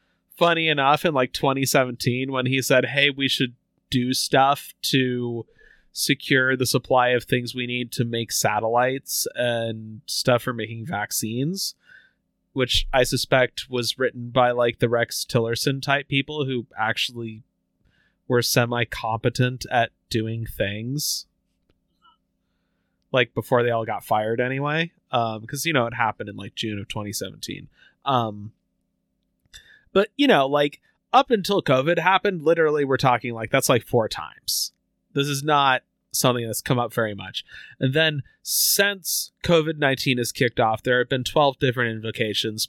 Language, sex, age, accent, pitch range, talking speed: English, male, 20-39, American, 120-150 Hz, 150 wpm